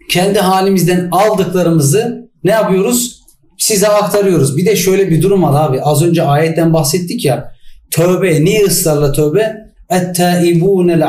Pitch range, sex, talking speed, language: 155-190 Hz, male, 130 wpm, Turkish